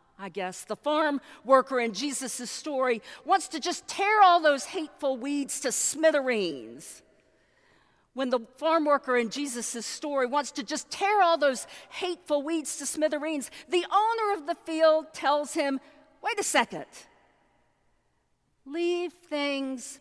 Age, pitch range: 50-69, 205-295 Hz